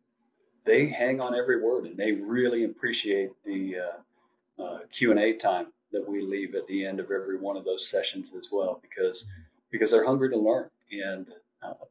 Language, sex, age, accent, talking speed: English, male, 40-59, American, 190 wpm